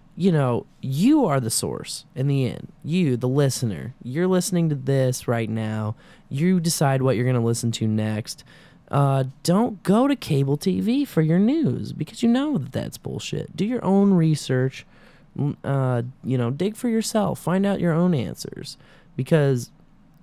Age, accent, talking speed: 20-39, American, 170 wpm